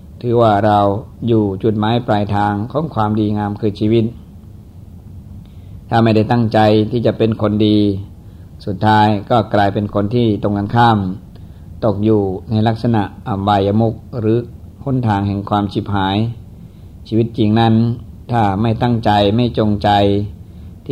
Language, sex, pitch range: Thai, male, 100-115 Hz